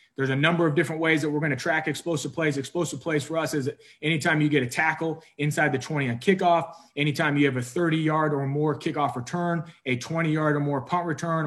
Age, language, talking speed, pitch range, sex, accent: 30-49, English, 230 wpm, 140-160 Hz, male, American